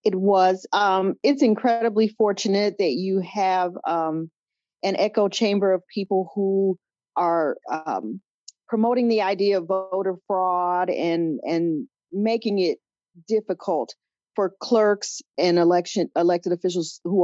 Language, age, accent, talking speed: English, 40-59, American, 125 wpm